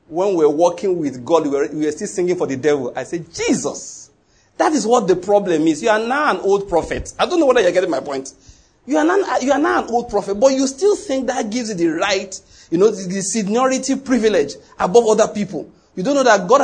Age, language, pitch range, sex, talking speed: 40-59, English, 175-240 Hz, male, 230 wpm